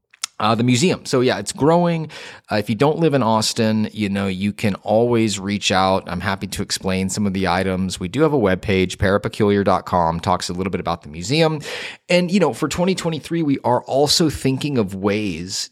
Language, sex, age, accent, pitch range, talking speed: English, male, 30-49, American, 95-125 Hz, 200 wpm